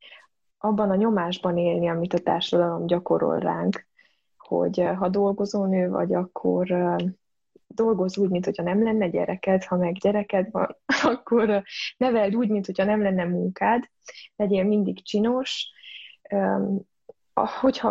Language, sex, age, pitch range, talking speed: Hungarian, female, 20-39, 180-205 Hz, 115 wpm